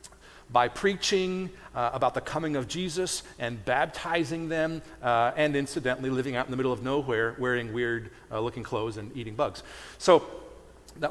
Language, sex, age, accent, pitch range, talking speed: English, male, 40-59, American, 125-165 Hz, 165 wpm